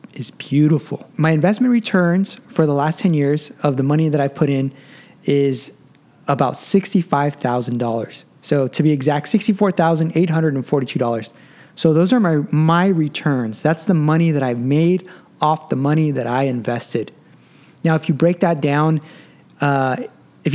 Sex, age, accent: male, 20-39, American